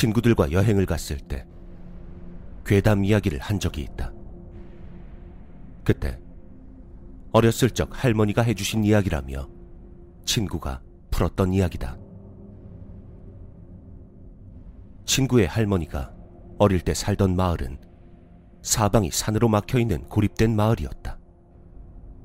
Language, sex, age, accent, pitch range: Korean, male, 40-59, native, 85-100 Hz